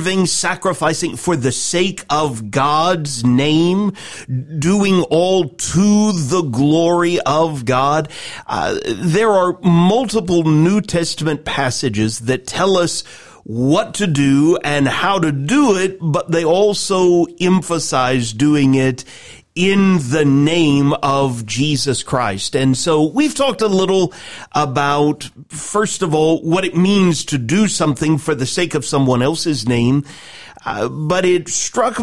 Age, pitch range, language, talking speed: 40-59, 140-180 Hz, English, 135 wpm